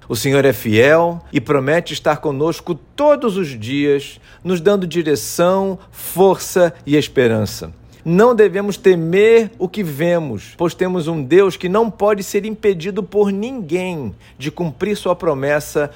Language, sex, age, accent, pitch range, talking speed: Portuguese, male, 50-69, Brazilian, 135-185 Hz, 145 wpm